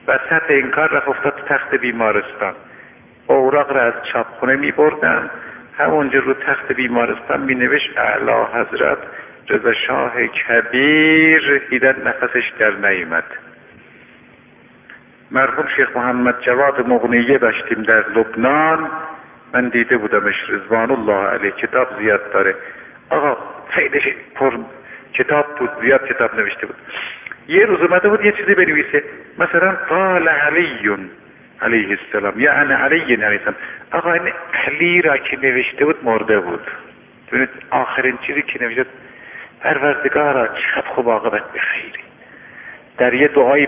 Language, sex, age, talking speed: Persian, male, 50-69, 120 wpm